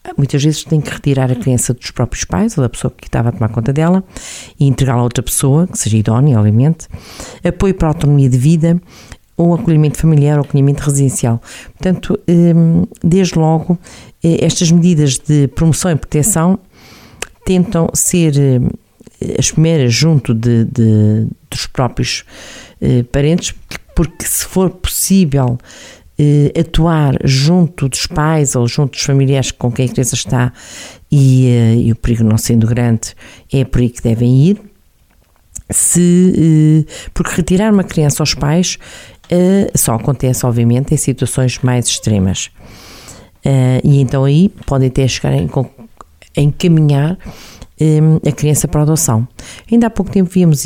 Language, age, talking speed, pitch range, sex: Portuguese, 50-69, 140 wpm, 125-165 Hz, female